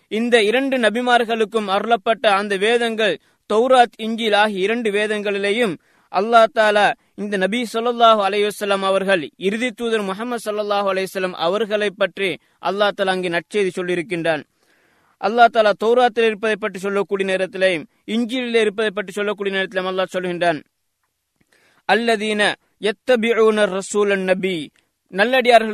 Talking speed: 105 wpm